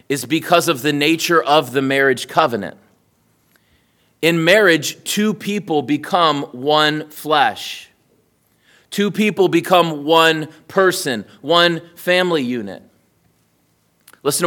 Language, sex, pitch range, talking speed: English, male, 135-170 Hz, 105 wpm